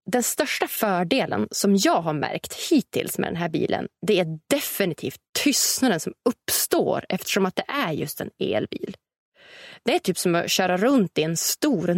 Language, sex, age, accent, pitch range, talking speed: English, female, 20-39, Swedish, 180-255 Hz, 175 wpm